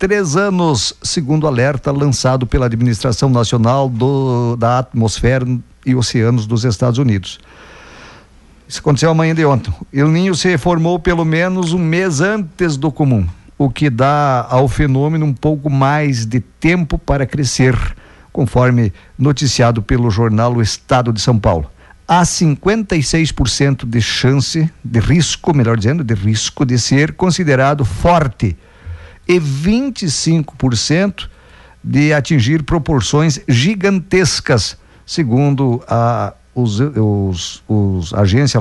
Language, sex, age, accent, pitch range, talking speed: Portuguese, male, 50-69, Brazilian, 115-160 Hz, 120 wpm